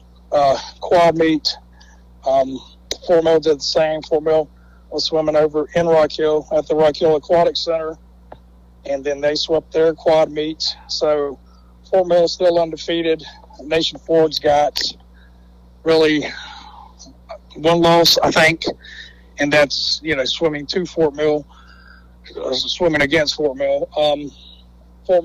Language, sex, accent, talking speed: English, male, American, 140 wpm